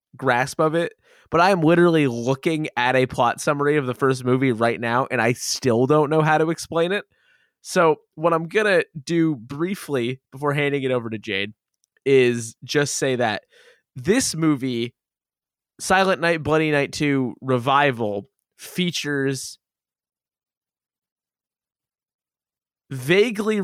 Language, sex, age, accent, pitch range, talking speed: English, male, 20-39, American, 125-165 Hz, 130 wpm